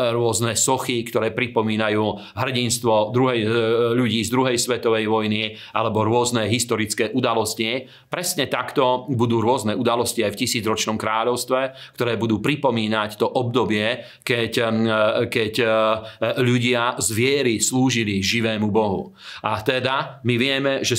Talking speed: 115 wpm